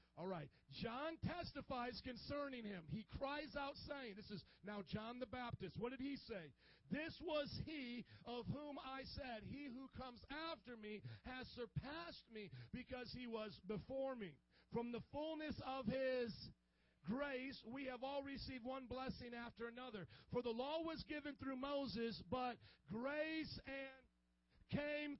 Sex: male